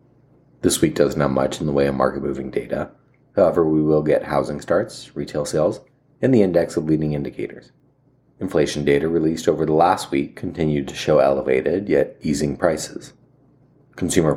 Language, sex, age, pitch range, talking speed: English, male, 30-49, 70-95 Hz, 165 wpm